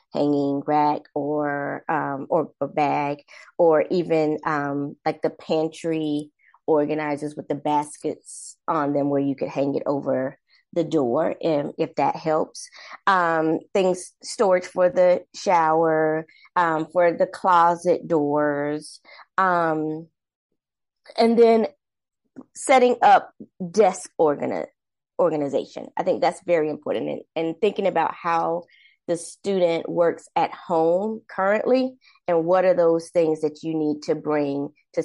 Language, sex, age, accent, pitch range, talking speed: English, female, 20-39, American, 150-180 Hz, 135 wpm